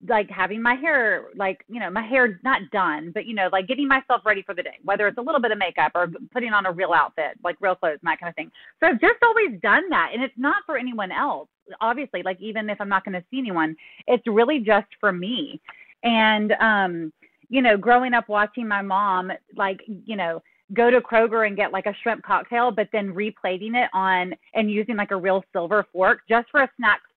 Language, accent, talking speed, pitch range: English, American, 235 wpm, 190-245 Hz